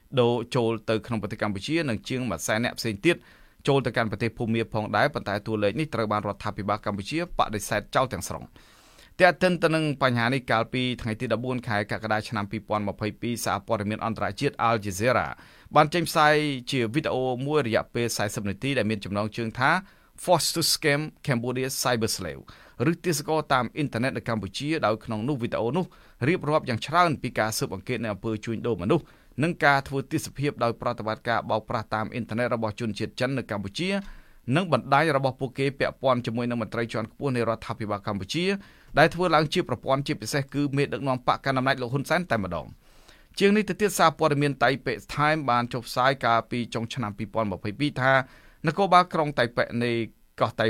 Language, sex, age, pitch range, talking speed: English, male, 20-39, 110-145 Hz, 55 wpm